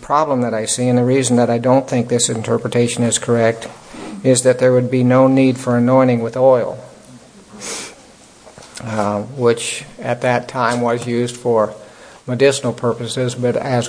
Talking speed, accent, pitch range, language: 165 wpm, American, 115-125 Hz, English